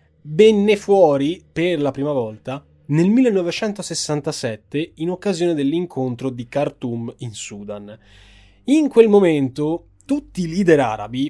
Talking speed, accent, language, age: 115 wpm, native, Italian, 20-39